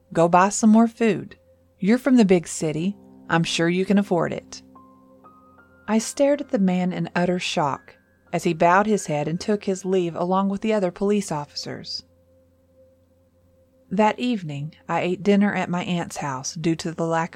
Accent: American